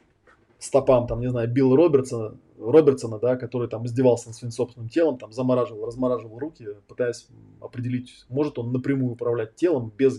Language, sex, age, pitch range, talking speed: Russian, male, 20-39, 120-145 Hz, 155 wpm